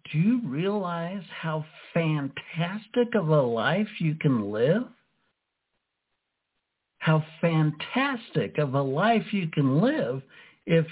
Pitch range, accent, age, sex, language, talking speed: 145-190 Hz, American, 60-79, male, English, 110 wpm